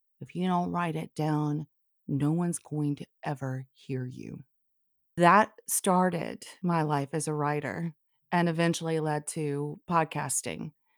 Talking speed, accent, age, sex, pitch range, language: 135 wpm, American, 40-59, female, 160-195 Hz, English